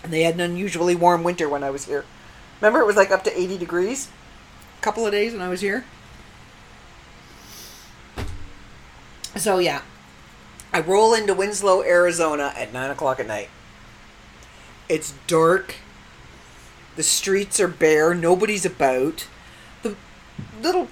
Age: 40-59